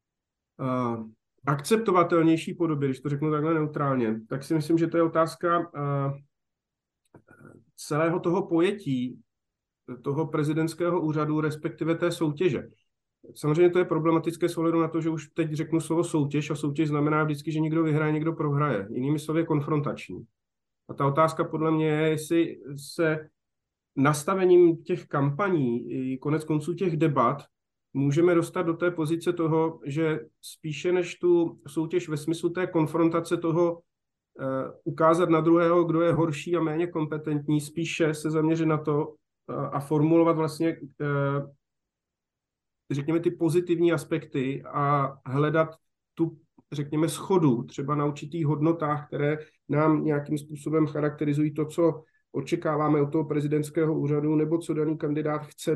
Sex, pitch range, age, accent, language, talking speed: male, 150-165 Hz, 30-49, native, Czech, 135 wpm